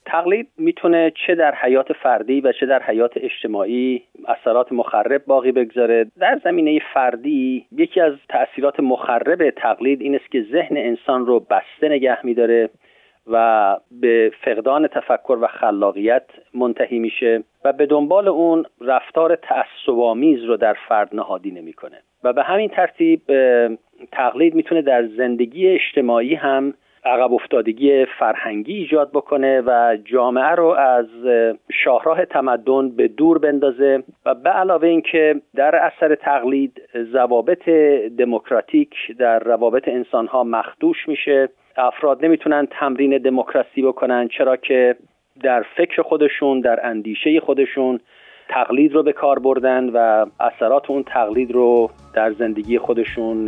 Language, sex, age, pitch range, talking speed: Persian, male, 40-59, 120-160 Hz, 130 wpm